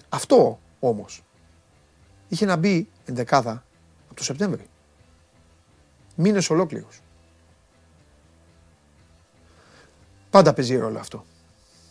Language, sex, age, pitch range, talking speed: Greek, male, 40-59, 105-175 Hz, 75 wpm